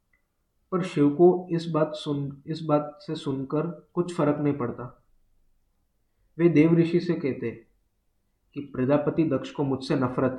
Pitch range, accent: 130-160 Hz, native